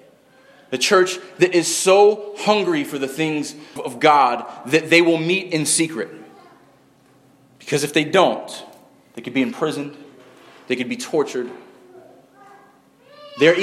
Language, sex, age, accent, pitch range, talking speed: English, male, 30-49, American, 150-205 Hz, 130 wpm